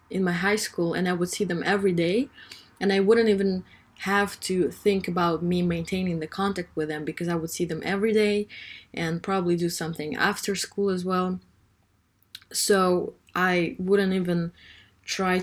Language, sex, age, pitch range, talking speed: English, female, 20-39, 165-195 Hz, 175 wpm